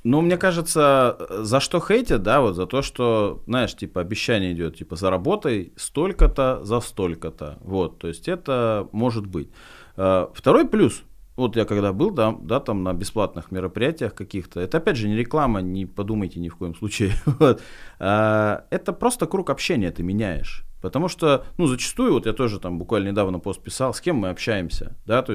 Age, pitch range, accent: 30-49, 100-140 Hz, native